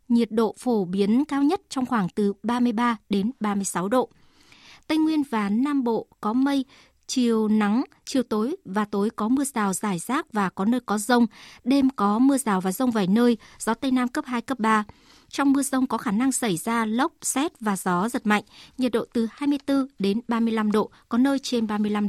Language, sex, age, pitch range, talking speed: Vietnamese, male, 60-79, 210-265 Hz, 205 wpm